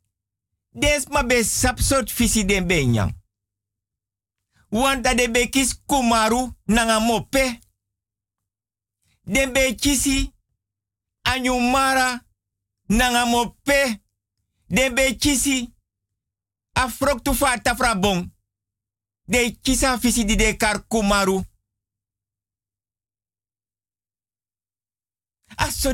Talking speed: 60 wpm